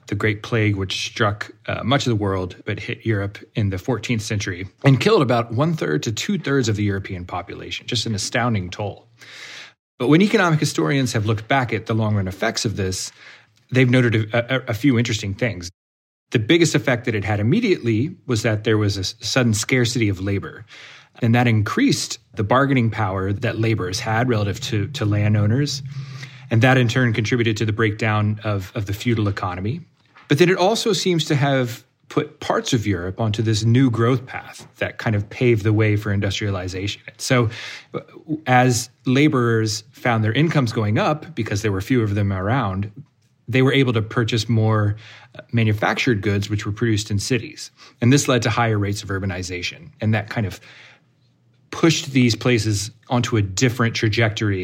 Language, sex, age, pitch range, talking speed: English, male, 30-49, 105-130 Hz, 180 wpm